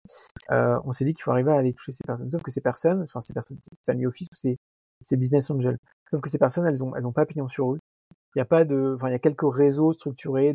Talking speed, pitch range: 285 wpm, 130-155 Hz